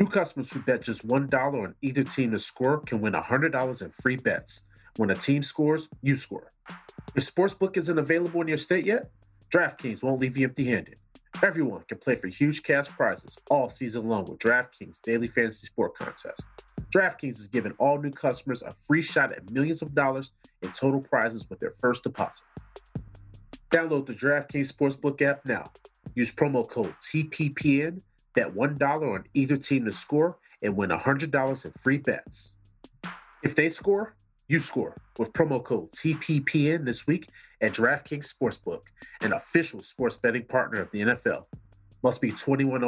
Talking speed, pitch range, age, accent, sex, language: 170 wpm, 120-155 Hz, 30-49, American, male, English